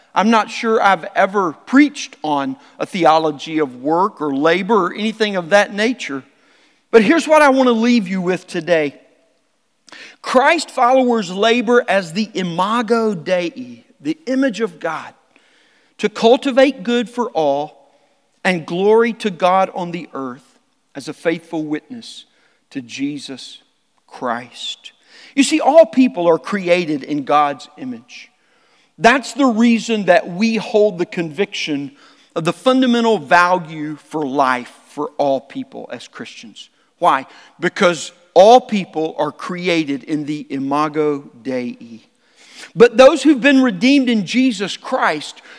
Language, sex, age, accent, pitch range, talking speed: English, male, 50-69, American, 165-245 Hz, 135 wpm